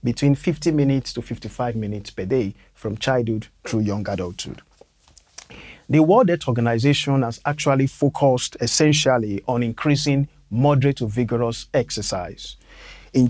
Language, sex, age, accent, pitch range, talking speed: Finnish, male, 50-69, Nigerian, 115-145 Hz, 125 wpm